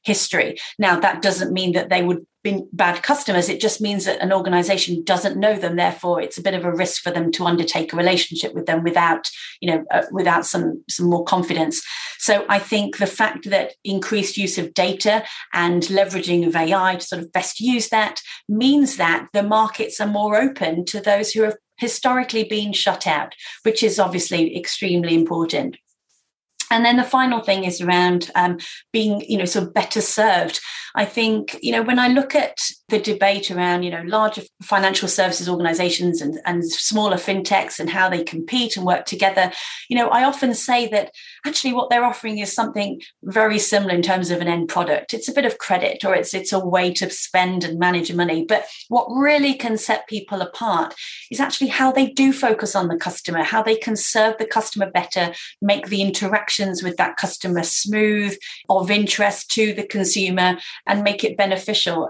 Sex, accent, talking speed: female, British, 195 wpm